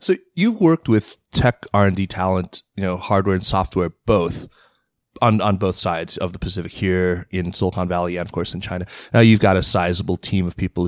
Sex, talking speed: male, 205 wpm